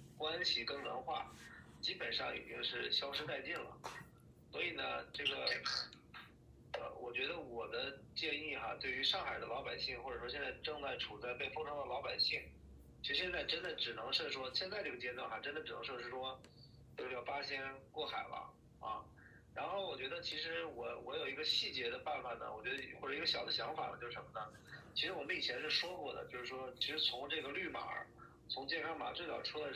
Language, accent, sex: Chinese, native, male